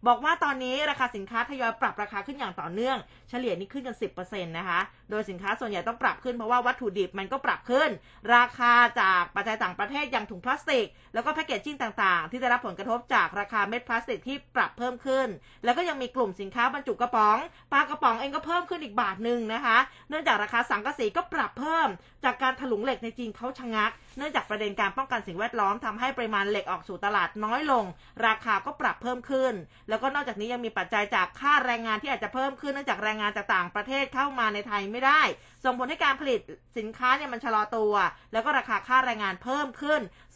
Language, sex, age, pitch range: Thai, female, 20-39, 210-270 Hz